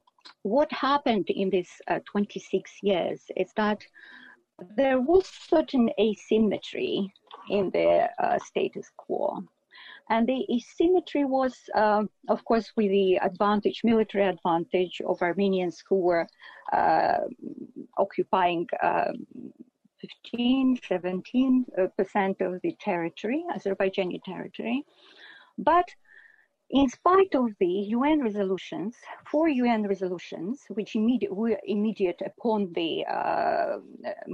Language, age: English, 50-69